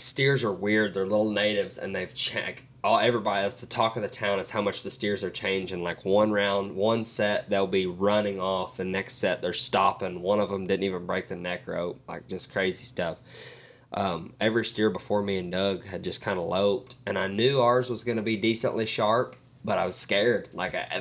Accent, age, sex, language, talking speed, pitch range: American, 20-39, male, English, 225 wpm, 95-115 Hz